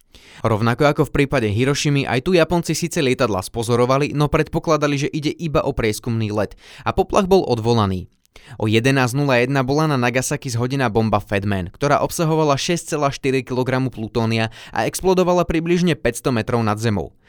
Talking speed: 150 wpm